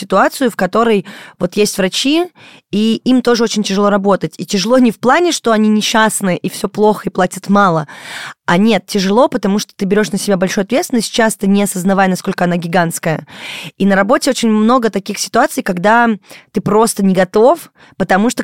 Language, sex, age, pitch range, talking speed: Russian, female, 20-39, 185-225 Hz, 185 wpm